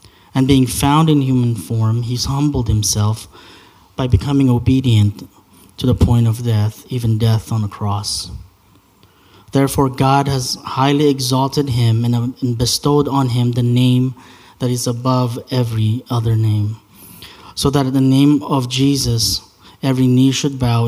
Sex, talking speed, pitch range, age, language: male, 145 wpm, 100-130 Hz, 20-39, English